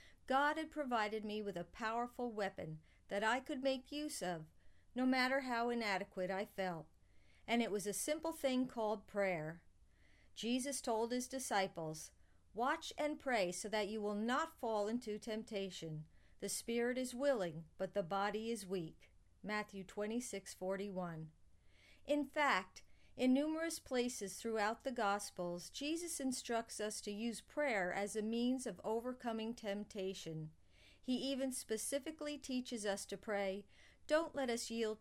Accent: American